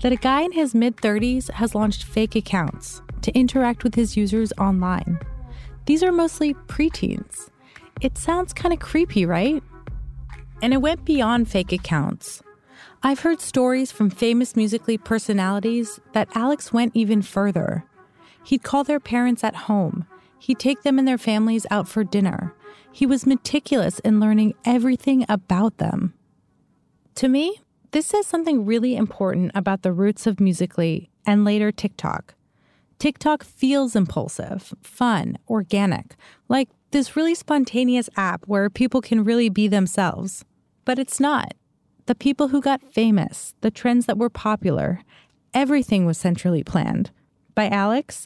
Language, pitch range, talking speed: English, 195-260 Hz, 145 wpm